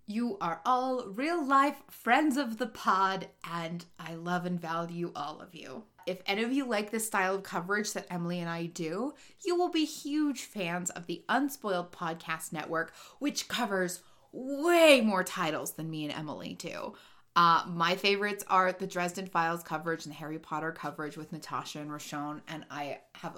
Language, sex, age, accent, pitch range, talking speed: English, female, 20-39, American, 175-245 Hz, 180 wpm